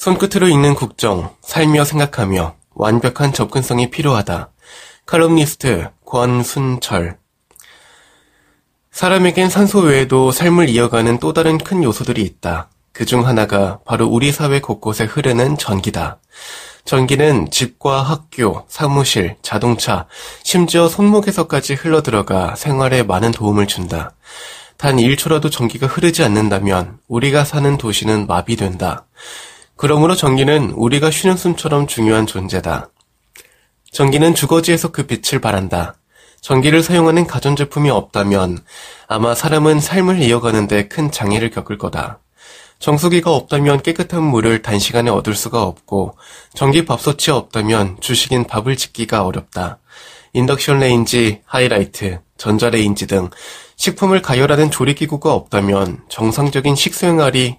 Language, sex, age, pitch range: Korean, male, 20-39, 105-150 Hz